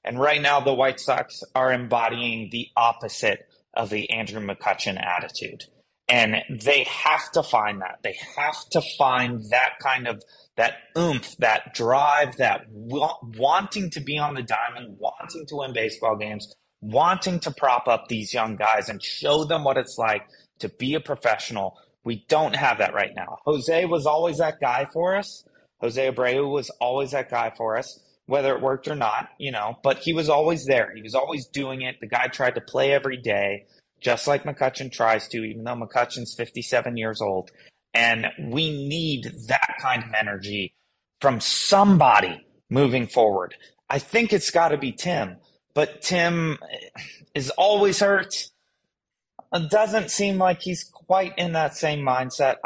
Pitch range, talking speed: 115-160 Hz, 170 wpm